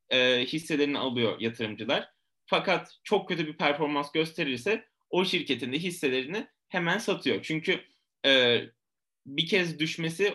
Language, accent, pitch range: Turkish, native, 130-180 Hz